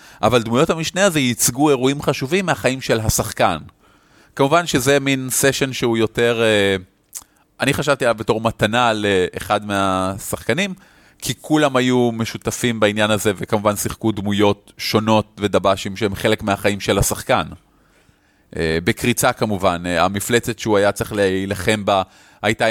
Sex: male